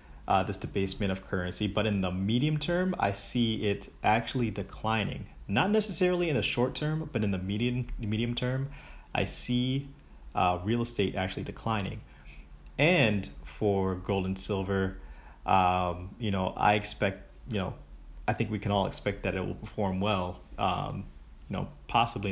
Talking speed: 165 wpm